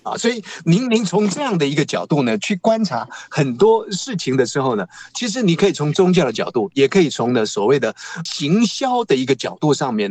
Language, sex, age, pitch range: Chinese, male, 50-69, 140-215 Hz